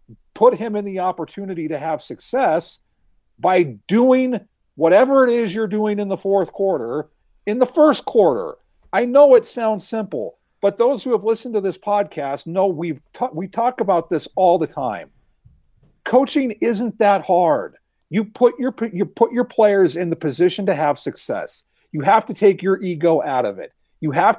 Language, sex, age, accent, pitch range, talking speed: English, male, 50-69, American, 155-220 Hz, 180 wpm